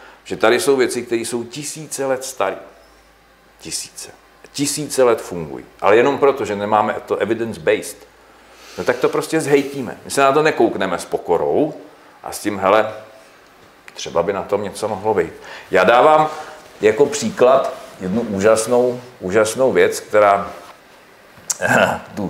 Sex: male